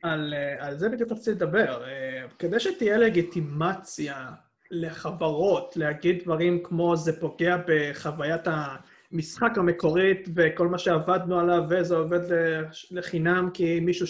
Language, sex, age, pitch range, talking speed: Hebrew, male, 20-39, 160-205 Hz, 115 wpm